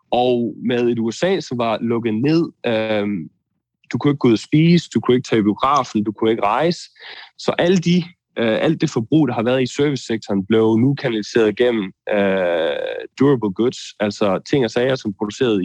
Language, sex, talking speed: Danish, male, 185 wpm